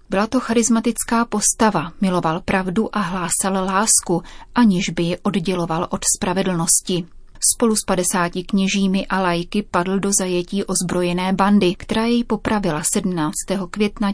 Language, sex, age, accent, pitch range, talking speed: Czech, female, 30-49, native, 180-205 Hz, 130 wpm